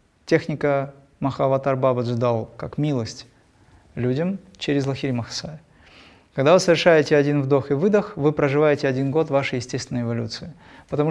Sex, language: male, Russian